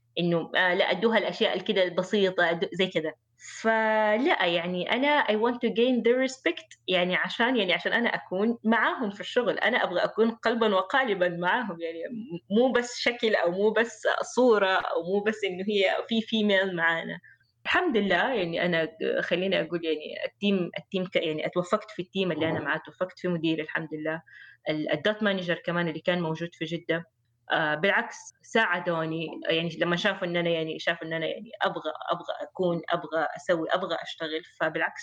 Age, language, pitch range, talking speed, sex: 20-39, Arabic, 165-200 Hz, 170 wpm, female